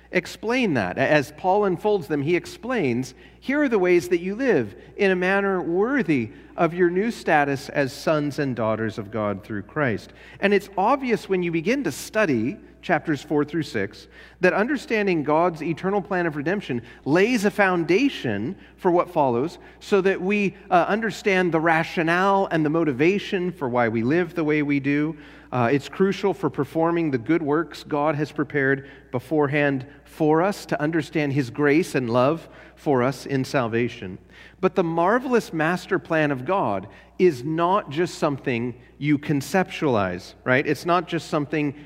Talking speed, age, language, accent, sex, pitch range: 165 wpm, 40-59, English, American, male, 140-190 Hz